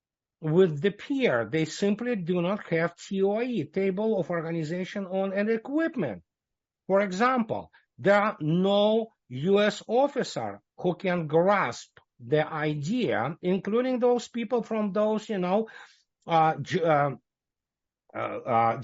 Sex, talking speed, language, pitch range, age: male, 120 wpm, English, 160-210 Hz, 60-79